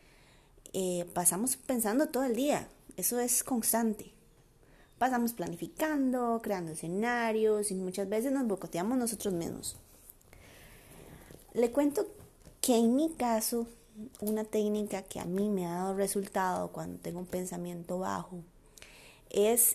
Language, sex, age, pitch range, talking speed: Spanish, female, 20-39, 195-250 Hz, 125 wpm